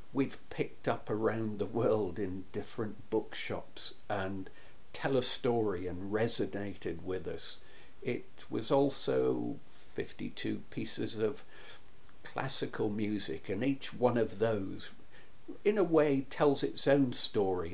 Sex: male